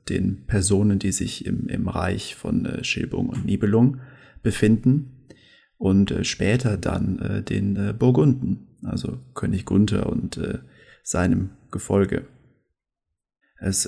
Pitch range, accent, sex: 95-120 Hz, German, male